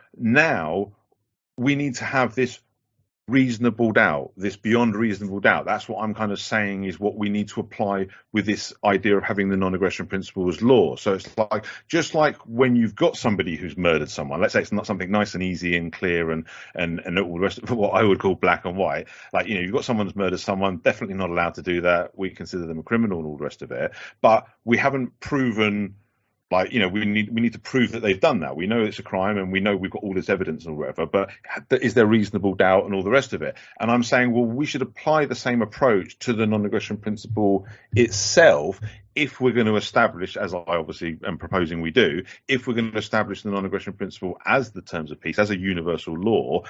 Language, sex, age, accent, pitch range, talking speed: Czech, male, 40-59, British, 95-120 Hz, 235 wpm